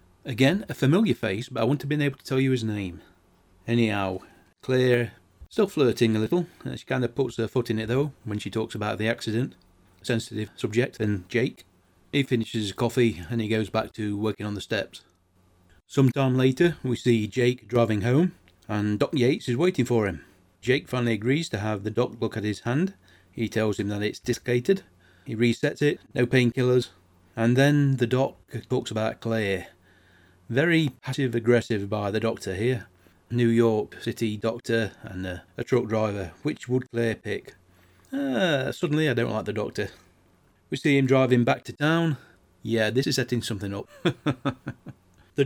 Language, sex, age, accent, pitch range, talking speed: English, male, 40-59, British, 105-130 Hz, 185 wpm